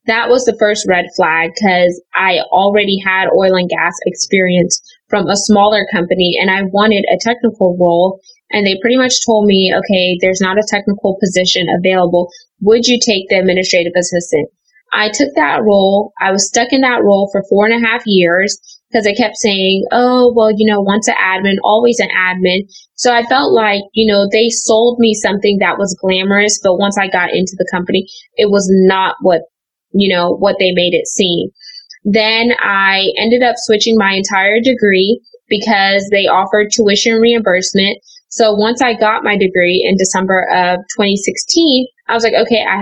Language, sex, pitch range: English, female, 190-225 Hz